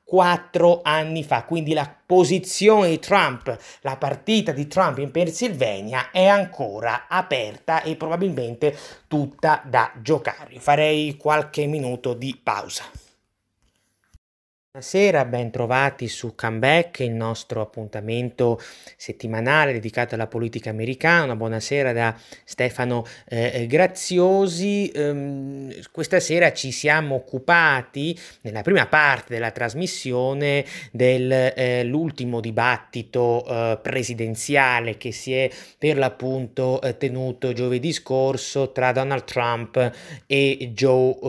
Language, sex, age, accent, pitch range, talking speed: Italian, male, 30-49, native, 120-155 Hz, 110 wpm